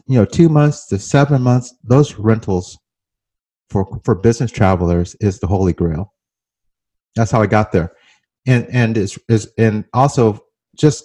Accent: American